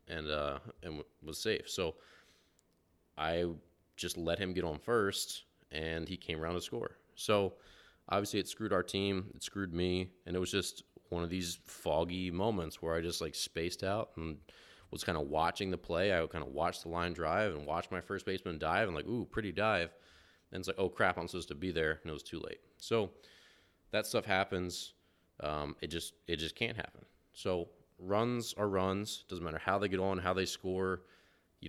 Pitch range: 80-95 Hz